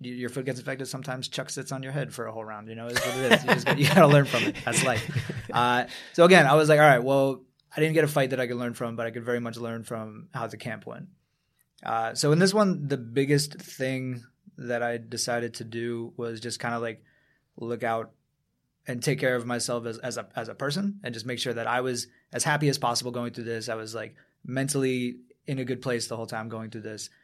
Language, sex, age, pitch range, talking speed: English, male, 20-39, 120-145 Hz, 265 wpm